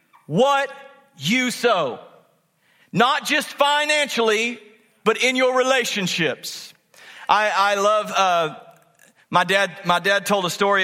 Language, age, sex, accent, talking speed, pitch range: English, 40-59, male, American, 115 wpm, 160-205 Hz